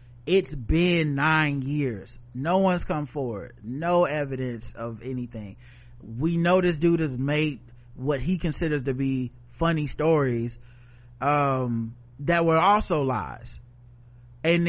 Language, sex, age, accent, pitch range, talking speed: English, male, 30-49, American, 125-170 Hz, 125 wpm